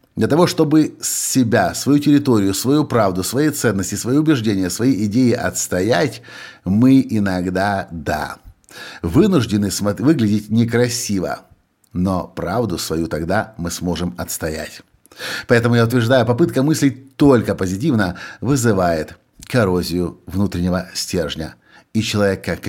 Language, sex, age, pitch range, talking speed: Russian, male, 50-69, 95-135 Hz, 110 wpm